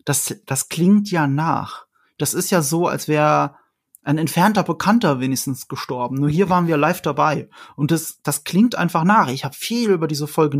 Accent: German